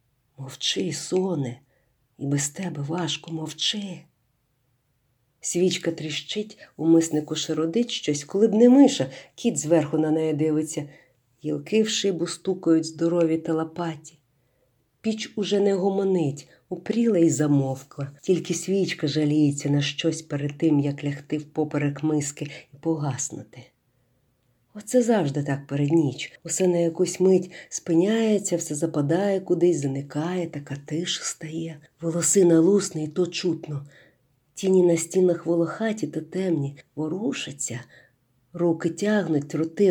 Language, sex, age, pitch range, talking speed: Ukrainian, female, 50-69, 145-185 Hz, 120 wpm